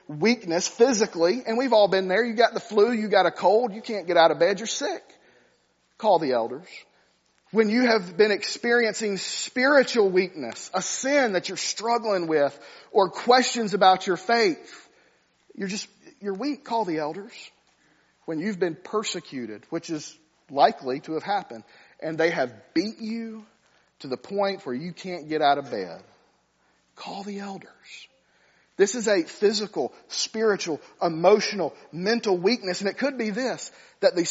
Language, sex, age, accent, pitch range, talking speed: English, male, 40-59, American, 170-225 Hz, 165 wpm